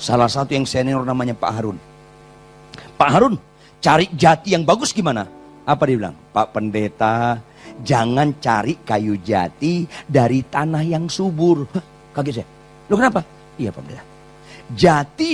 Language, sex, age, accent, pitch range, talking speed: Indonesian, male, 40-59, native, 120-175 Hz, 140 wpm